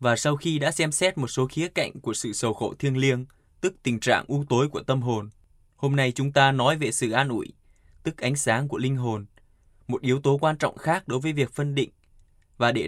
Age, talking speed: 20-39, 240 wpm